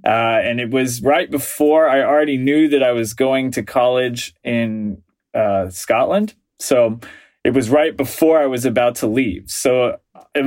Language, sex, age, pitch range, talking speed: English, male, 20-39, 120-150 Hz, 170 wpm